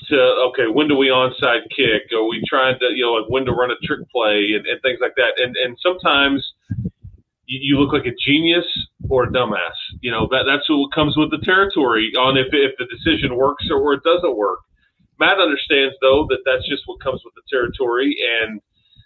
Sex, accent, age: male, American, 40-59